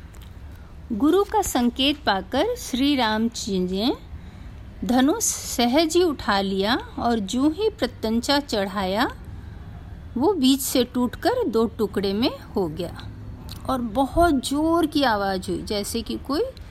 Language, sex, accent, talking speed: Hindi, female, native, 130 wpm